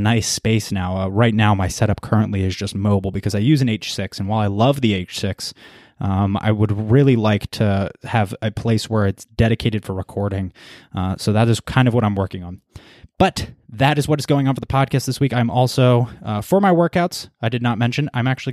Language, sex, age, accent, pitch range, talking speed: English, male, 20-39, American, 100-125 Hz, 230 wpm